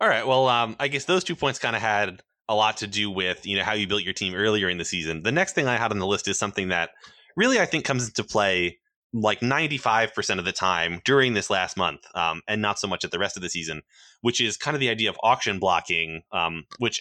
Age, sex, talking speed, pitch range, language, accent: 20-39, male, 270 wpm, 95-125 Hz, English, American